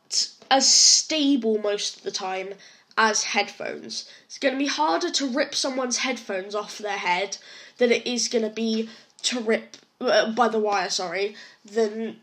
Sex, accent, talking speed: female, British, 155 wpm